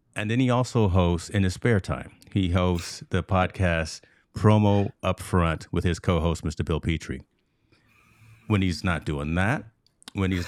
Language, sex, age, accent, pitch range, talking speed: English, male, 30-49, American, 85-100 Hz, 160 wpm